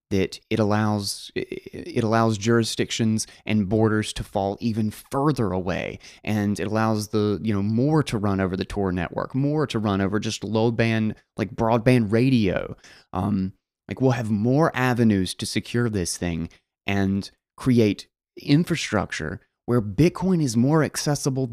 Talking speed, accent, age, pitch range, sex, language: 150 wpm, American, 20-39, 105-135 Hz, male, English